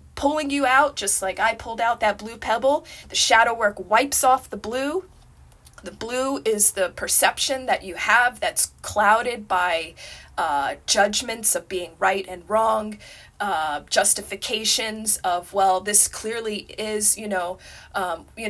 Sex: female